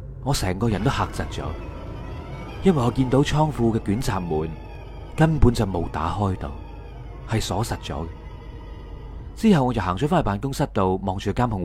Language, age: Chinese, 30-49